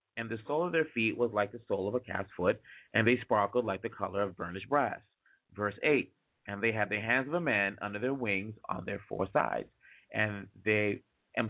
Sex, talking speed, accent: male, 225 wpm, American